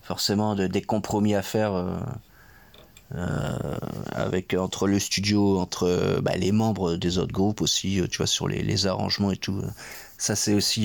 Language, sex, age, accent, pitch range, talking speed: French, male, 40-59, French, 90-105 Hz, 170 wpm